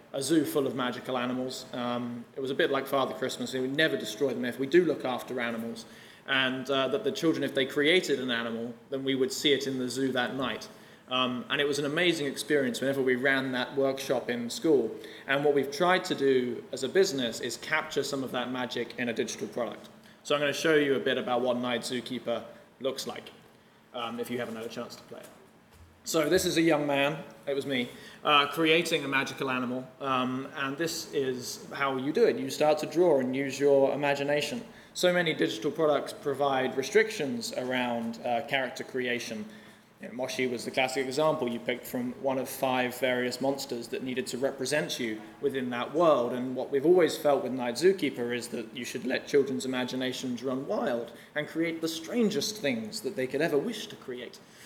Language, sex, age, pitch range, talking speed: English, male, 20-39, 125-145 Hz, 210 wpm